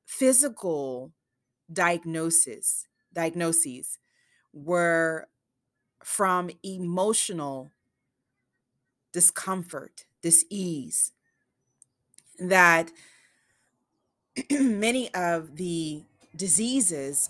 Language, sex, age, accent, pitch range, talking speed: English, female, 30-49, American, 130-180 Hz, 45 wpm